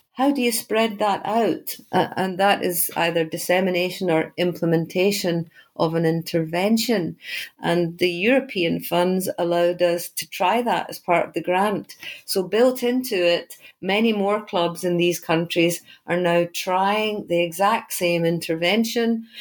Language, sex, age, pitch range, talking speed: English, female, 50-69, 165-185 Hz, 150 wpm